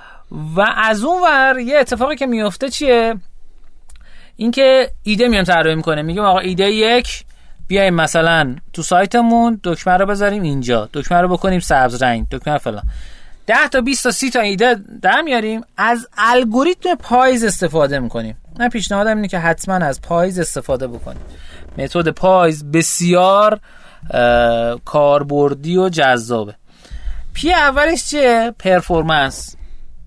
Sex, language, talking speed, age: male, Persian, 130 wpm, 30-49